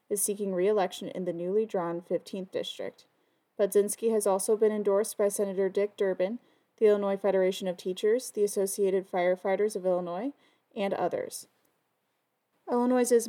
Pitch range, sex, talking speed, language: 190-220 Hz, female, 140 wpm, English